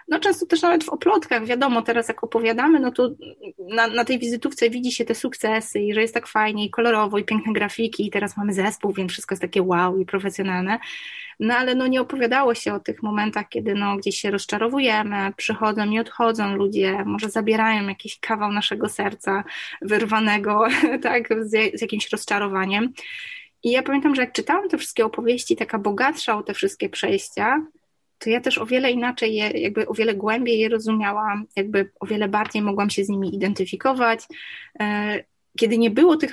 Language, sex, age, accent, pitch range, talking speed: Polish, female, 20-39, native, 210-255 Hz, 185 wpm